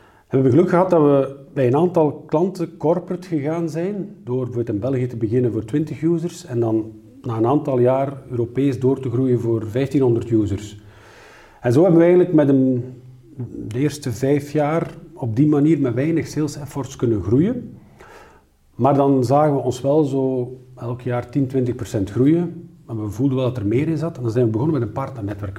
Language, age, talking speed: Dutch, 50-69, 195 wpm